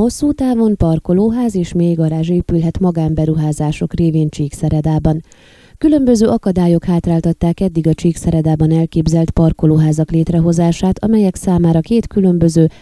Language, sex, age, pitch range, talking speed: Hungarian, female, 20-39, 155-180 Hz, 105 wpm